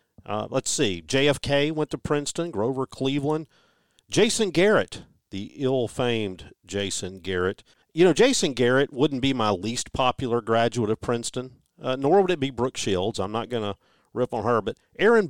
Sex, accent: male, American